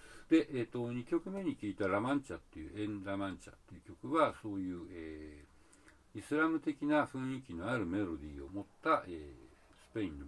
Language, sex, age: Japanese, male, 60-79